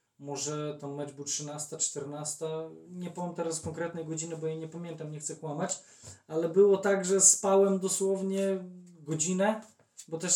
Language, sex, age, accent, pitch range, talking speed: Polish, male, 20-39, native, 155-180 Hz, 155 wpm